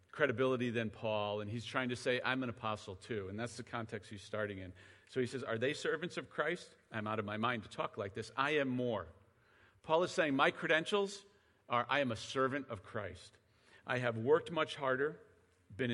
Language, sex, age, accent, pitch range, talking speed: English, male, 40-59, American, 110-155 Hz, 215 wpm